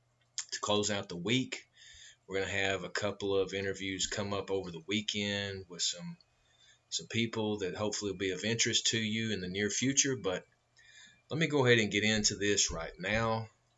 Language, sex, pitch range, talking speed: English, male, 95-115 Hz, 195 wpm